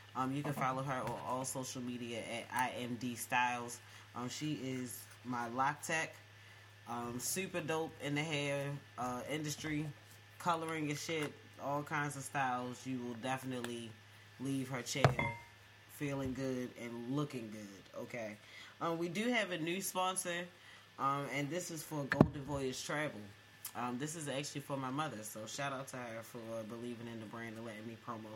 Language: English